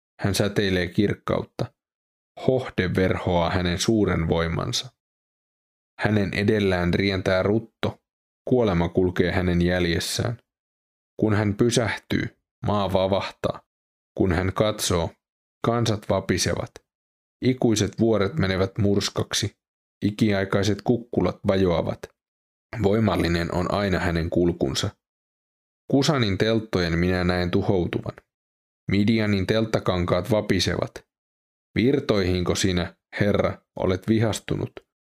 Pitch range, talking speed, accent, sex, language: 90-110 Hz, 85 wpm, native, male, Finnish